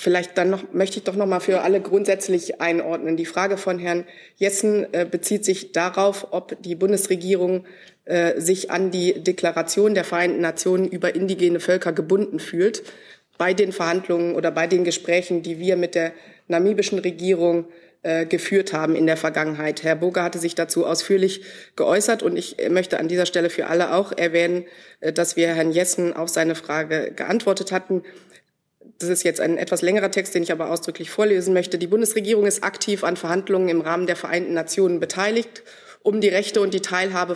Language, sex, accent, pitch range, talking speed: German, female, German, 170-195 Hz, 175 wpm